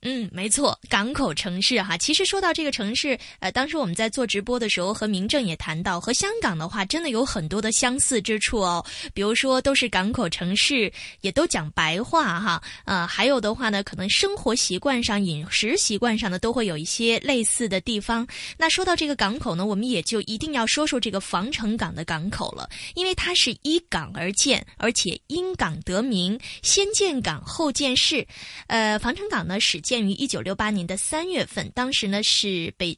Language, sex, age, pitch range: Chinese, female, 20-39, 195-270 Hz